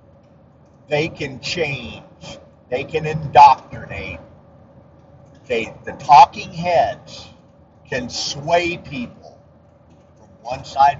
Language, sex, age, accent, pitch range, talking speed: English, male, 50-69, American, 135-190 Hz, 80 wpm